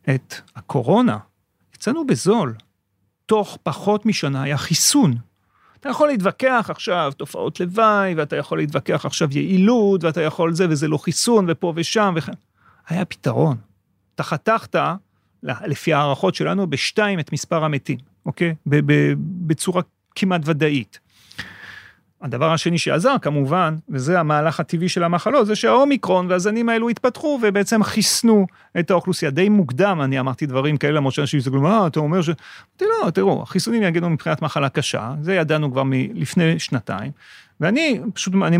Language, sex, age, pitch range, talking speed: Hebrew, male, 40-59, 145-205 Hz, 140 wpm